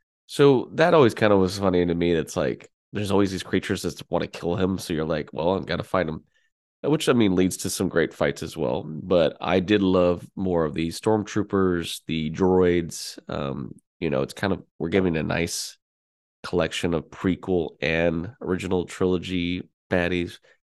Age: 20-39